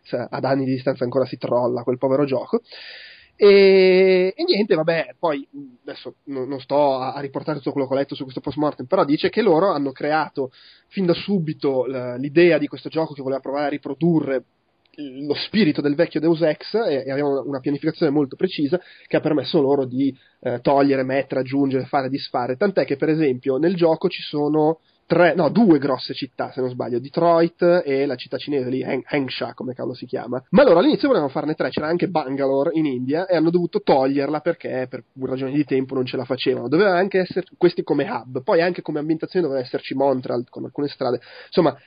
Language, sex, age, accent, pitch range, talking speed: Italian, male, 20-39, native, 135-160 Hz, 200 wpm